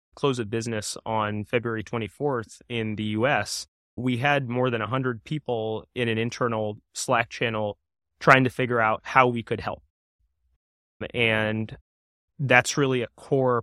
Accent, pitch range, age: American, 105-120 Hz, 20-39